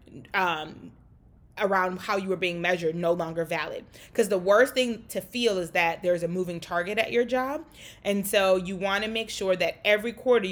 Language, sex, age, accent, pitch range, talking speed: English, female, 20-39, American, 170-210 Hz, 200 wpm